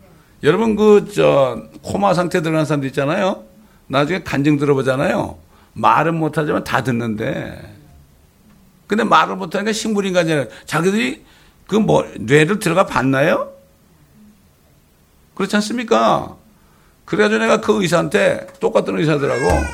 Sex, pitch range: male, 120-190 Hz